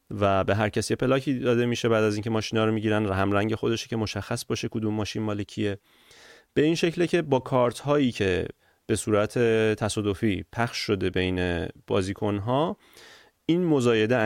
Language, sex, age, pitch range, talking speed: Persian, male, 30-49, 105-130 Hz, 175 wpm